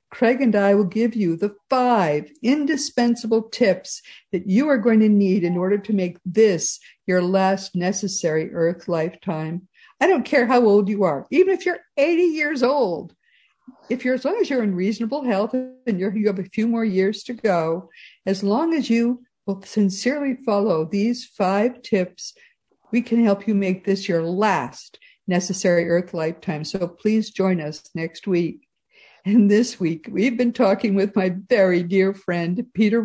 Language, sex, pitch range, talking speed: English, female, 180-235 Hz, 175 wpm